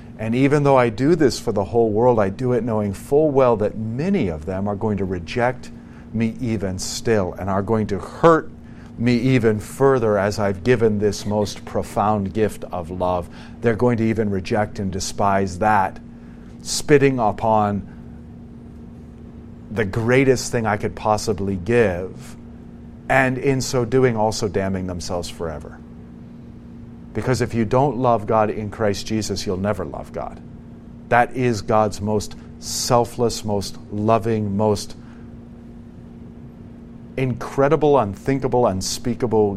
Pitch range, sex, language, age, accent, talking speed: 100-120 Hz, male, English, 50-69, American, 140 wpm